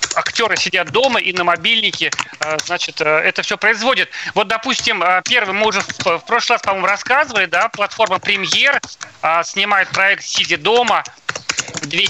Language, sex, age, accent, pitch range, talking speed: Russian, male, 40-59, native, 170-235 Hz, 145 wpm